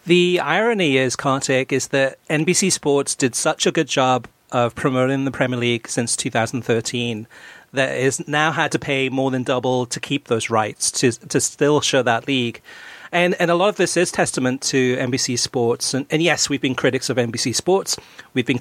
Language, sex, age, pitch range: English, male, 40-59, 125-155 Hz